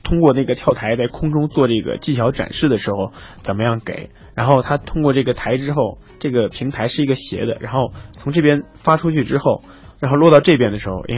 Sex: male